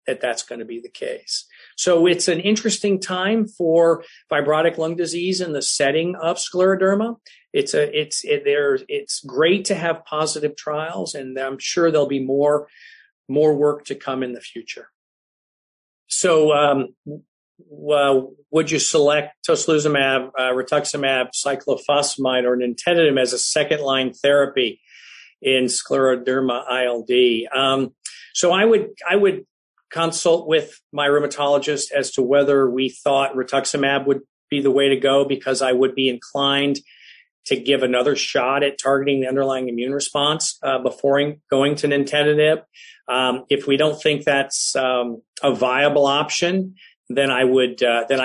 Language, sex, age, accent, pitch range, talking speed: English, male, 50-69, American, 130-165 Hz, 150 wpm